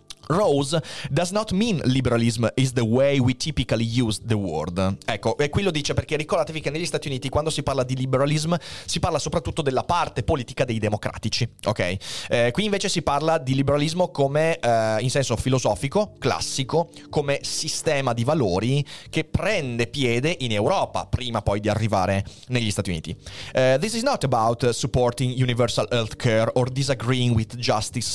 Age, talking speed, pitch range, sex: 30-49, 170 wpm, 110-150 Hz, male